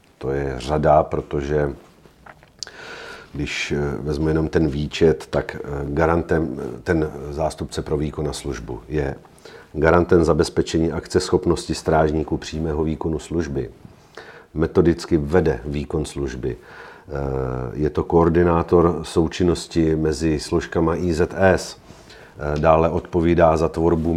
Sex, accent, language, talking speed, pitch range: male, native, Czech, 100 wpm, 75-85 Hz